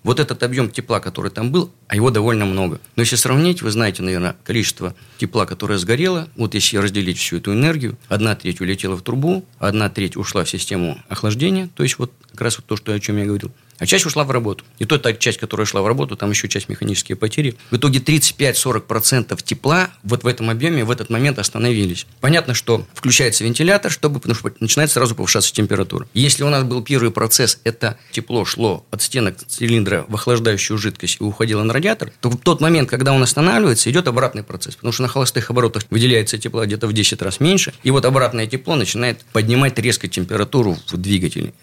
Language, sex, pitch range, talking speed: Russian, male, 105-130 Hz, 205 wpm